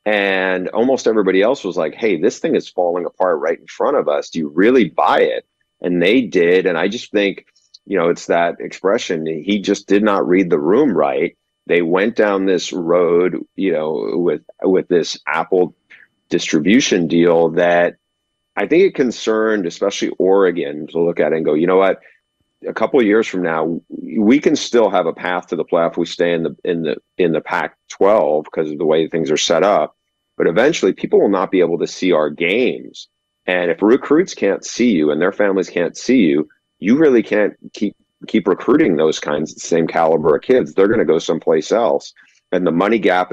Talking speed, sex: 205 wpm, male